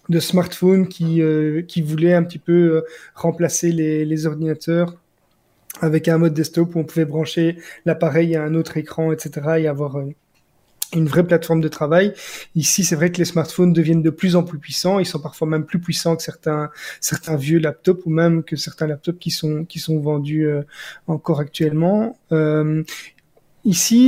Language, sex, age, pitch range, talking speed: French, male, 20-39, 155-175 Hz, 185 wpm